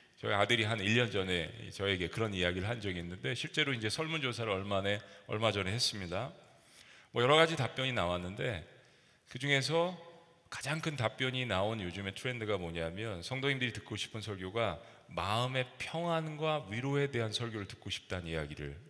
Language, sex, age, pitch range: Korean, male, 40-59, 100-140 Hz